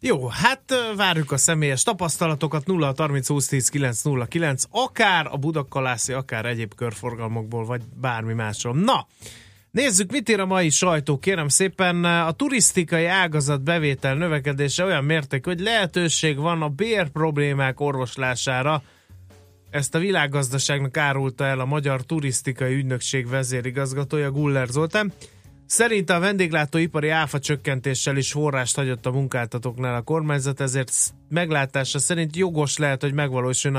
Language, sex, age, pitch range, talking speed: Hungarian, male, 30-49, 125-160 Hz, 125 wpm